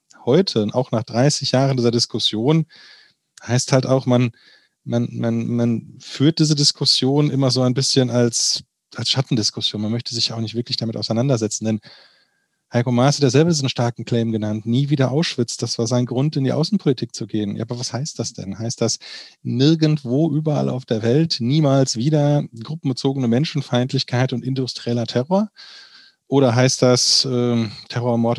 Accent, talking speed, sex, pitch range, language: German, 165 wpm, male, 115-135 Hz, German